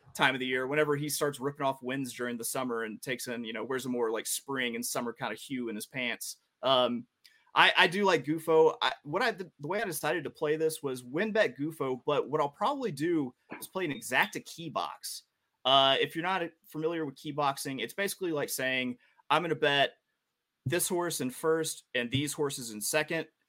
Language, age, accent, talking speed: English, 30-49, American, 220 wpm